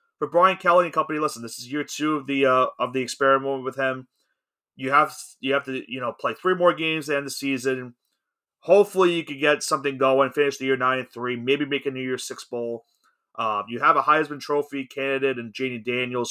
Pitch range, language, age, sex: 125-145 Hz, English, 30-49, male